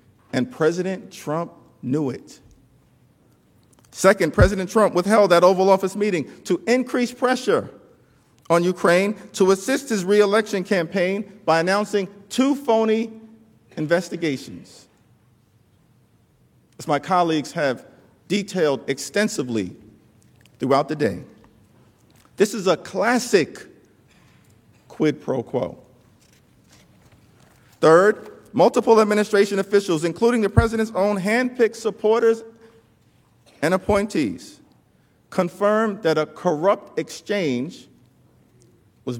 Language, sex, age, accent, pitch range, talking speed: English, male, 50-69, American, 150-210 Hz, 95 wpm